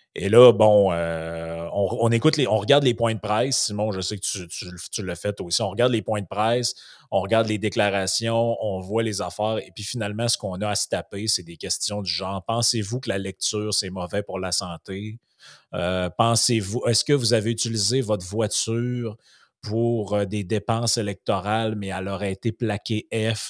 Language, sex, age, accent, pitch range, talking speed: French, male, 30-49, Canadian, 95-115 Hz, 205 wpm